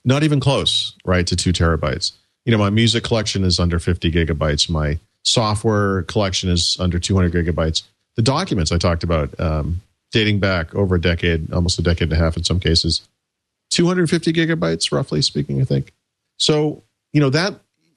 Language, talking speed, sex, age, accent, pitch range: English, 175 wpm, male, 40-59, American, 90-115 Hz